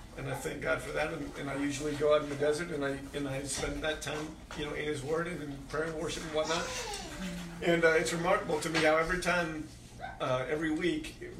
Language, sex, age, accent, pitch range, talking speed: English, male, 40-59, American, 150-165 Hz, 240 wpm